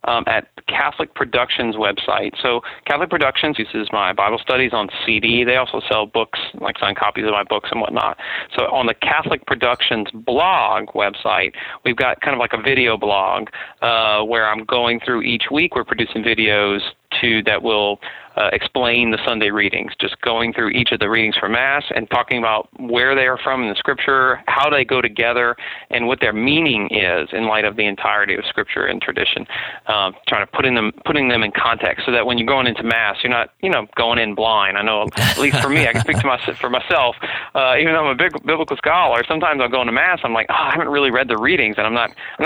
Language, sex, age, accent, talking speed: English, male, 40-59, American, 225 wpm